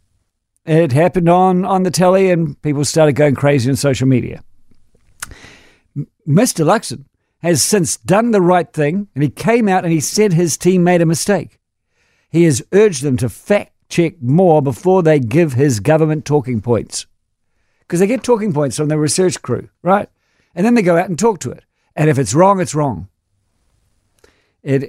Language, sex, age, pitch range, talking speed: English, male, 60-79, 130-180 Hz, 180 wpm